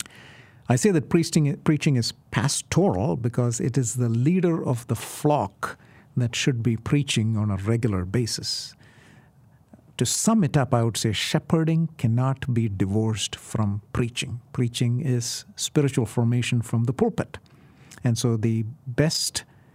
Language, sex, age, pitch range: English, male, 50-69, 115-140 Hz